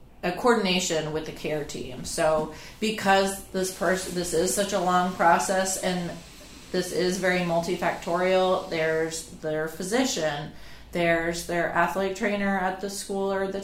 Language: English